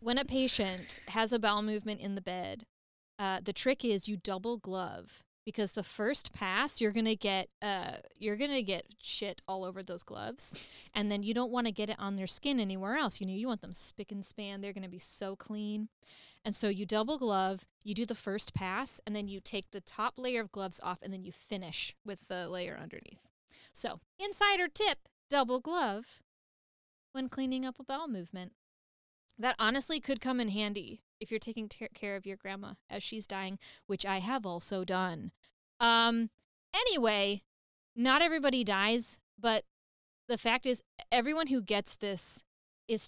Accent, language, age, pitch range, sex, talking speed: American, English, 20-39, 195-240 Hz, female, 185 wpm